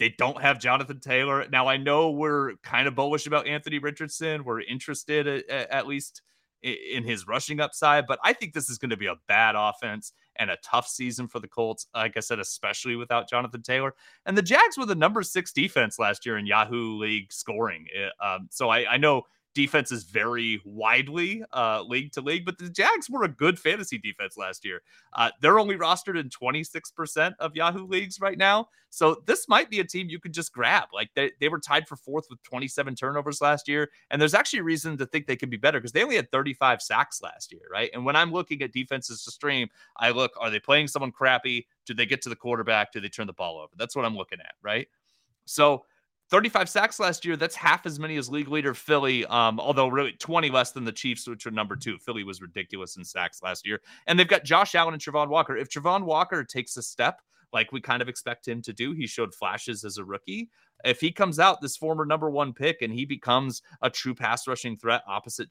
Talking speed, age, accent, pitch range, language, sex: 230 wpm, 30-49, American, 120-160 Hz, English, male